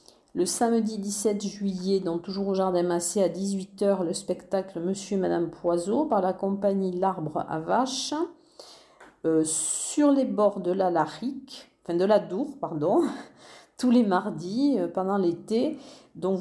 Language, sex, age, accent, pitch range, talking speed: French, female, 40-59, French, 170-210 Hz, 155 wpm